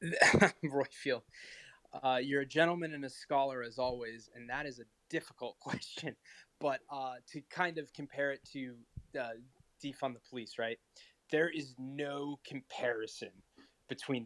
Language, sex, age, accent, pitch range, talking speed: English, male, 20-39, American, 120-150 Hz, 145 wpm